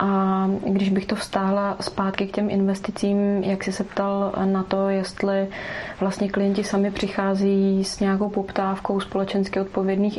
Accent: native